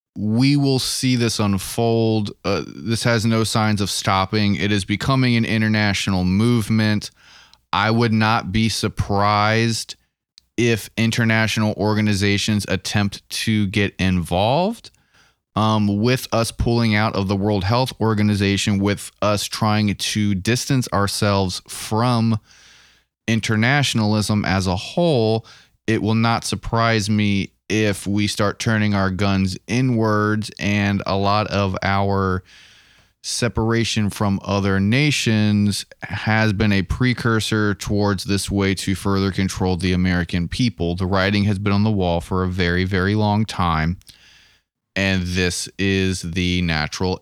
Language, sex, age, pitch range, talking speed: English, male, 20-39, 95-110 Hz, 130 wpm